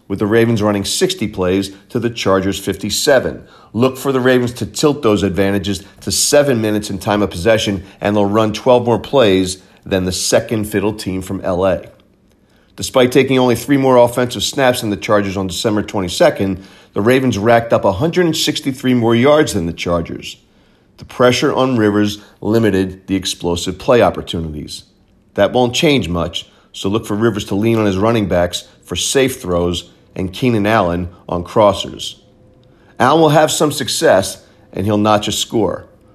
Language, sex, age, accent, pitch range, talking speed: English, male, 40-59, American, 95-120 Hz, 170 wpm